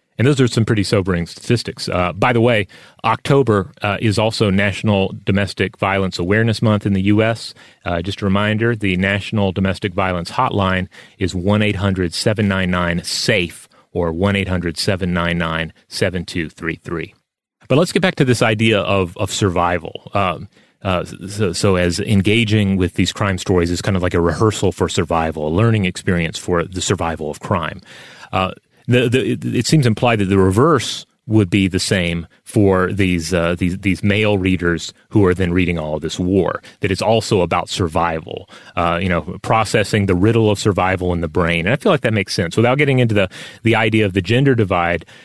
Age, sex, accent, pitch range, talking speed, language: 30-49, male, American, 90-110 Hz, 175 wpm, English